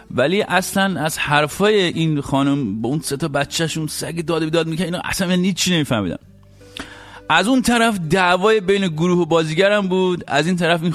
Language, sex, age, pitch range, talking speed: English, male, 50-69, 150-205 Hz, 180 wpm